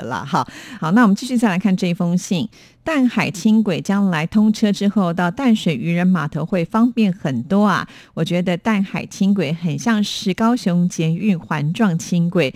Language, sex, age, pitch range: Chinese, female, 50-69, 160-205 Hz